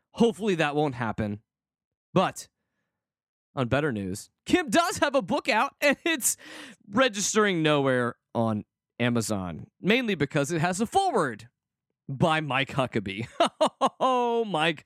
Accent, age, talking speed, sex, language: American, 20-39, 125 wpm, male, English